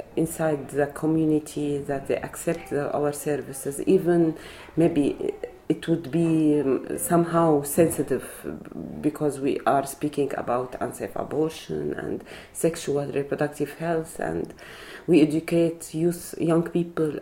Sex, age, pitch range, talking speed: female, 30-49, 145-170 Hz, 110 wpm